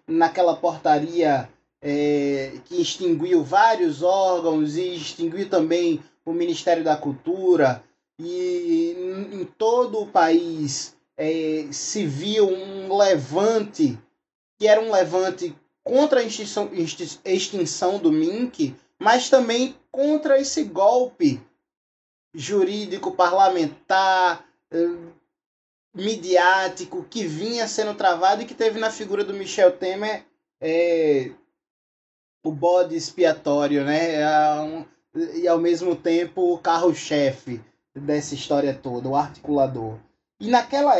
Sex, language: male, Portuguese